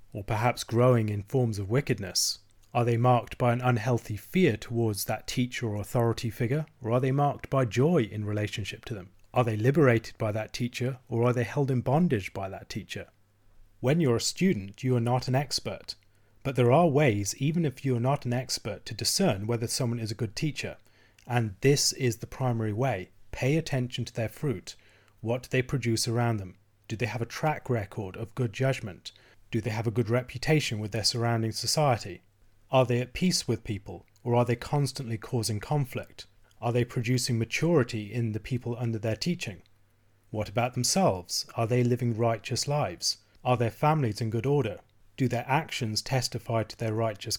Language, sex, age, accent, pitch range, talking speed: English, male, 30-49, British, 105-130 Hz, 190 wpm